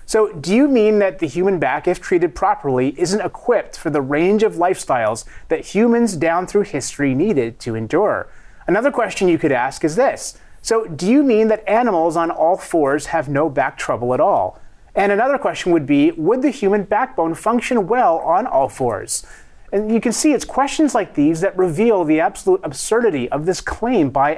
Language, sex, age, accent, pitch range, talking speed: English, male, 30-49, American, 150-230 Hz, 195 wpm